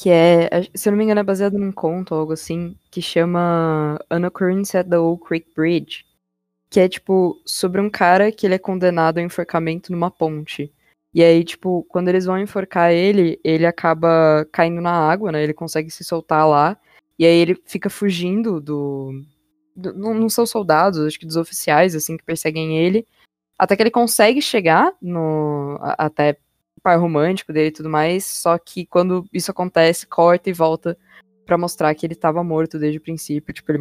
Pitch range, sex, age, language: 160-190 Hz, female, 20-39, Portuguese